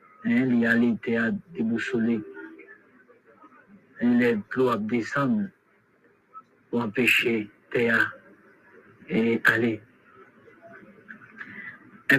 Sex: male